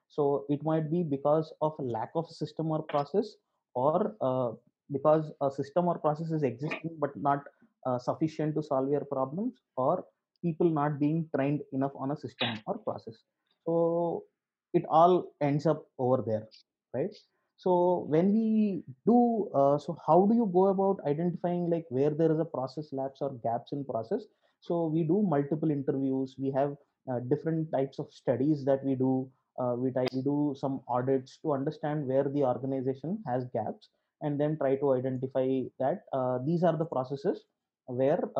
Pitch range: 135-165 Hz